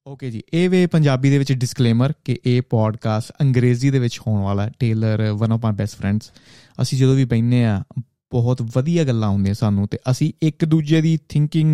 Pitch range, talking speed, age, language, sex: 110-135 Hz, 200 wpm, 30-49, Punjabi, male